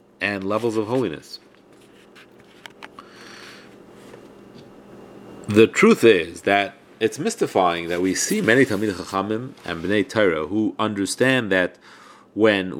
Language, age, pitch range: English, 30-49, 95-125 Hz